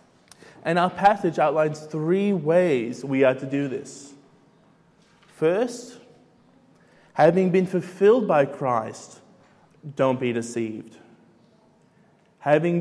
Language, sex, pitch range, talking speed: English, male, 120-170 Hz, 100 wpm